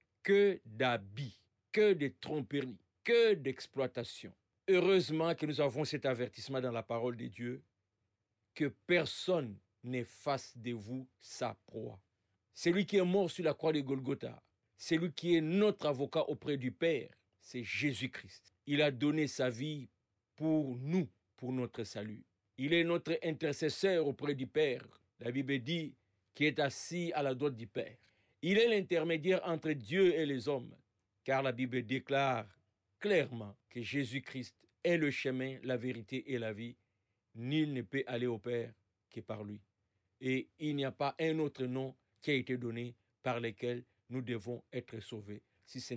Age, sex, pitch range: 50-69, male, 115-155 Hz